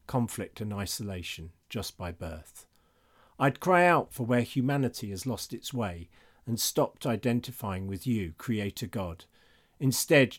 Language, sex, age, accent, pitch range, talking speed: English, male, 50-69, British, 100-135 Hz, 140 wpm